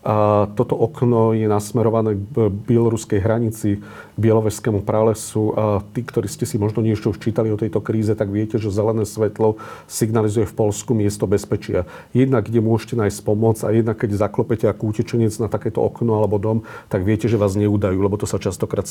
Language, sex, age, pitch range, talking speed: Slovak, male, 40-59, 105-115 Hz, 180 wpm